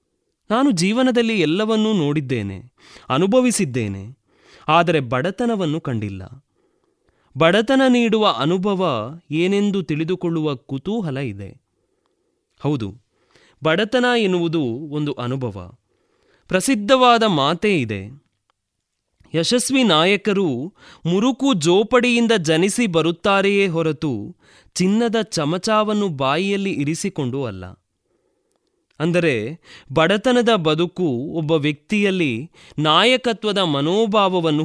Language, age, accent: Kannada, 20-39, native